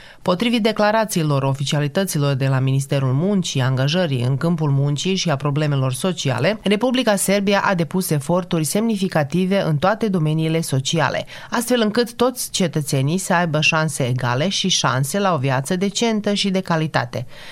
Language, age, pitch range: Romanian, 30-49, 145-190 Hz